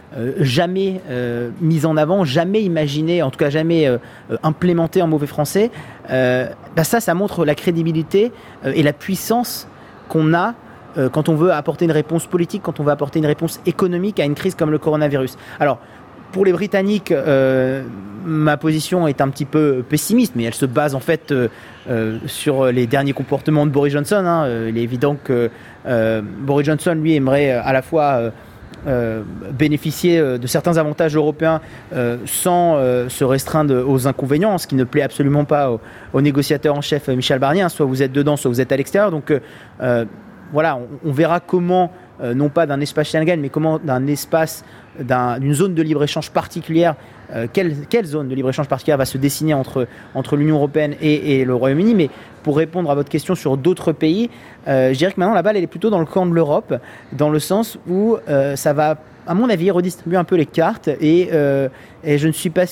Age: 30-49